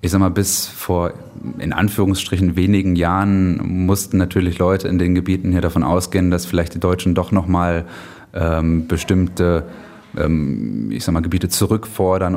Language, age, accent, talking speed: German, 20-39, German, 155 wpm